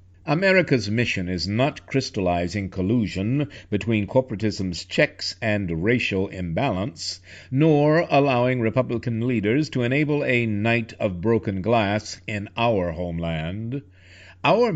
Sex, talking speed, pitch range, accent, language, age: male, 110 wpm, 100-145 Hz, American, English, 60-79